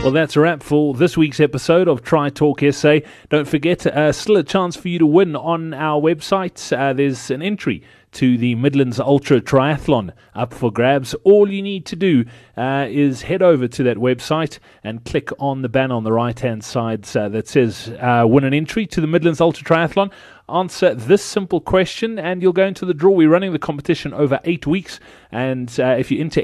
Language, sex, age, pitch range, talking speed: English, male, 30-49, 125-170 Hz, 210 wpm